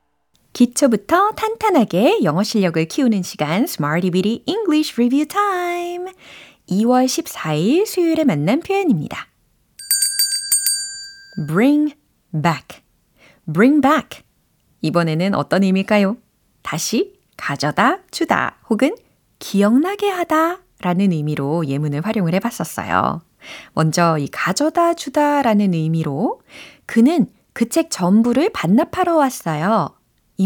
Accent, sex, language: native, female, Korean